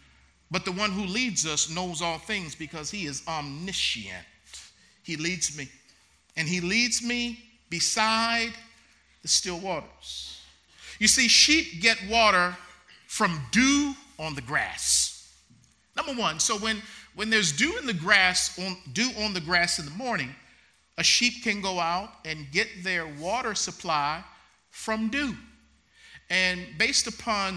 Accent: American